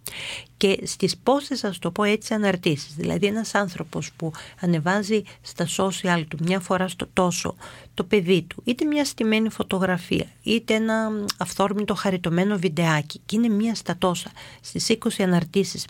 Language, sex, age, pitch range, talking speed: Greek, female, 40-59, 170-220 Hz, 145 wpm